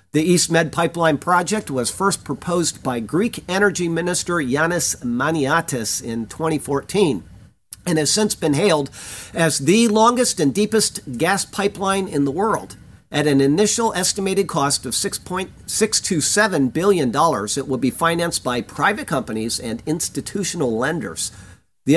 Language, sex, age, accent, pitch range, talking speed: English, male, 50-69, American, 140-195 Hz, 135 wpm